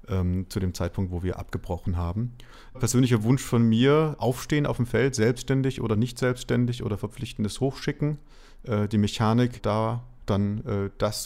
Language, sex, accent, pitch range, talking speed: German, male, German, 95-120 Hz, 160 wpm